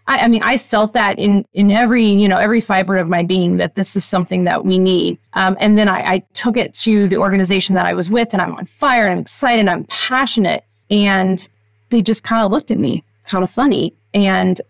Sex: female